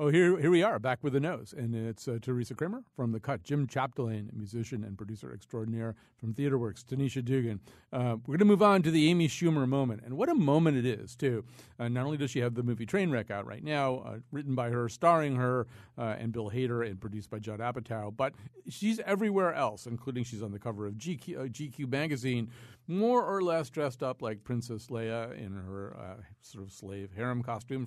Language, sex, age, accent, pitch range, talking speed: English, male, 50-69, American, 110-140 Hz, 220 wpm